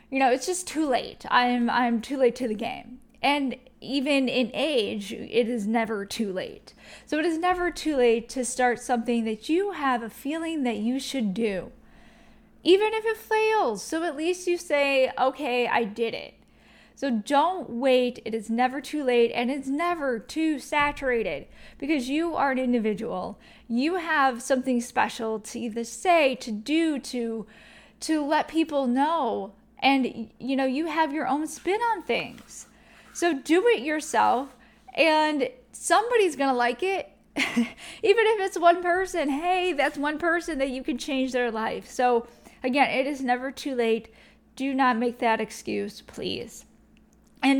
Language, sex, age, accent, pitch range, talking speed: English, female, 10-29, American, 230-305 Hz, 170 wpm